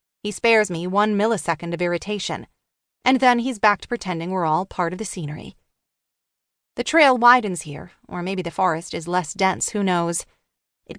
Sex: female